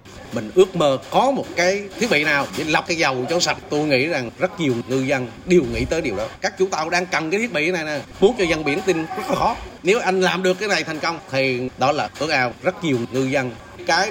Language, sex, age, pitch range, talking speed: Vietnamese, male, 30-49, 120-180 Hz, 270 wpm